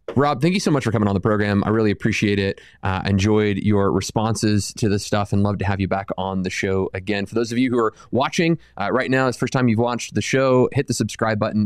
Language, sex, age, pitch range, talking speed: English, male, 20-39, 100-125 Hz, 280 wpm